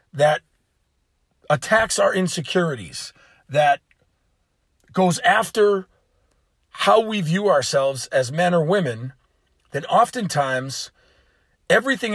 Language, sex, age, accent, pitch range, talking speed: English, male, 40-59, American, 125-200 Hz, 90 wpm